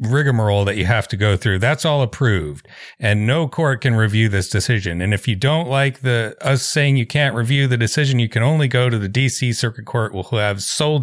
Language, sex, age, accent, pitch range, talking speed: English, male, 40-59, American, 100-130 Hz, 230 wpm